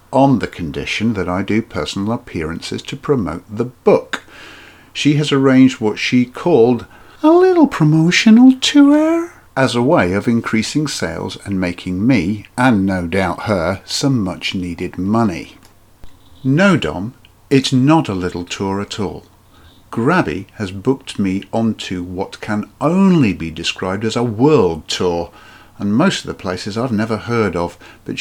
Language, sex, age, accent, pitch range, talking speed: English, male, 50-69, British, 95-135 Hz, 155 wpm